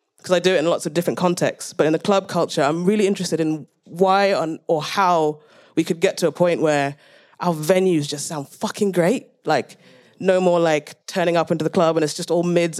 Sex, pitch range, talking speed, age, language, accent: female, 150-185 Hz, 225 wpm, 20-39, English, British